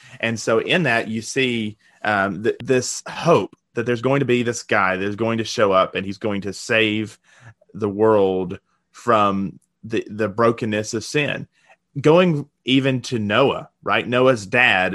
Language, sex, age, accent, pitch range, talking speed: English, male, 30-49, American, 105-130 Hz, 170 wpm